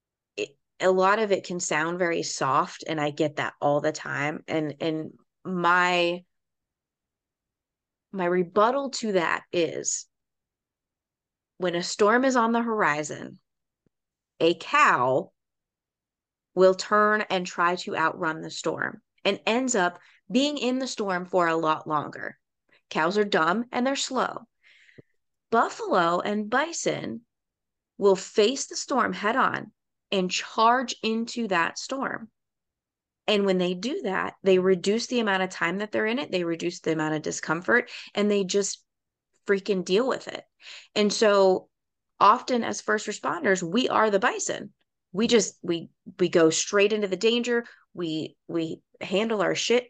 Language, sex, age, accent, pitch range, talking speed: English, female, 30-49, American, 175-225 Hz, 150 wpm